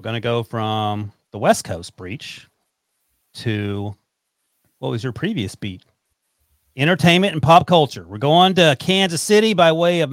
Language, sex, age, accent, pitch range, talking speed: English, male, 40-59, American, 110-155 Hz, 155 wpm